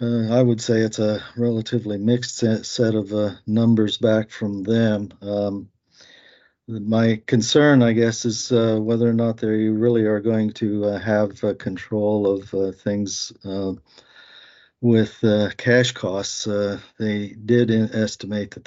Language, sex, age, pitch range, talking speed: English, male, 50-69, 100-110 Hz, 155 wpm